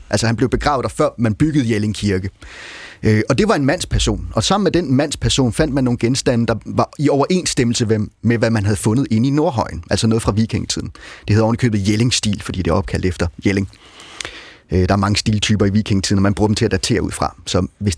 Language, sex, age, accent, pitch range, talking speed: Danish, male, 30-49, native, 105-140 Hz, 230 wpm